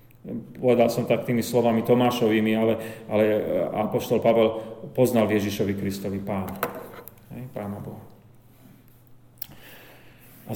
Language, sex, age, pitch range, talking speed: Slovak, male, 40-59, 110-125 Hz, 95 wpm